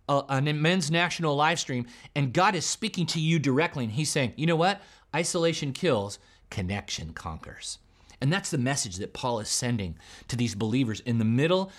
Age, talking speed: 30-49, 185 wpm